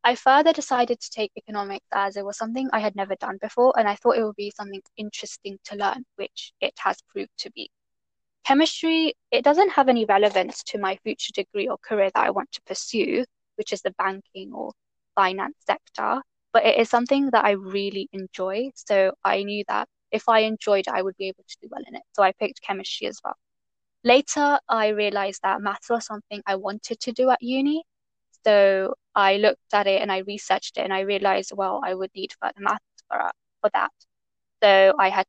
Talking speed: 205 wpm